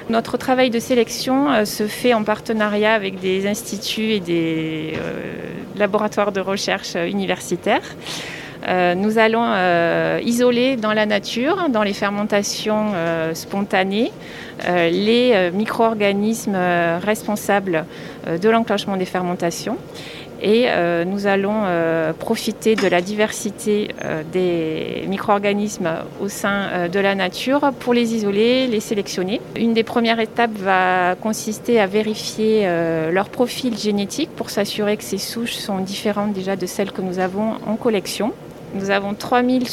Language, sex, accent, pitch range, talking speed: French, female, French, 185-225 Hz, 125 wpm